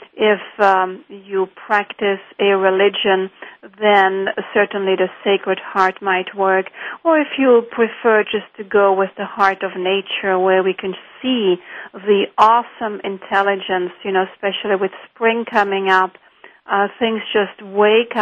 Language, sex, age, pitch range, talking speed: English, female, 40-59, 190-215 Hz, 140 wpm